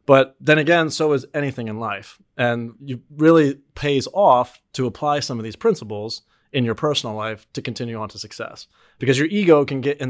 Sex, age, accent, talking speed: male, 30-49, American, 200 wpm